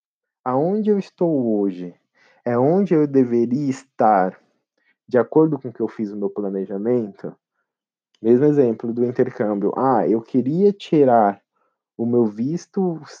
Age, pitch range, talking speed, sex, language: 20-39, 125-165 Hz, 135 wpm, male, Portuguese